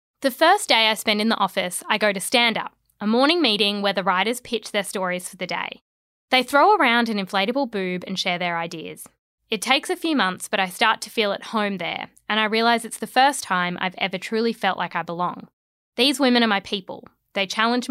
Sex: female